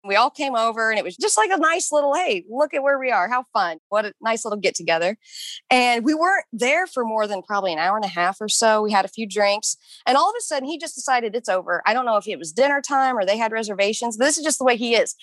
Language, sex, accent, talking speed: English, female, American, 295 wpm